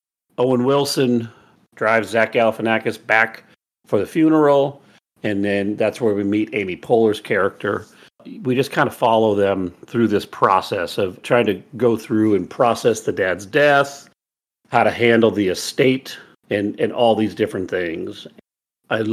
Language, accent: English, American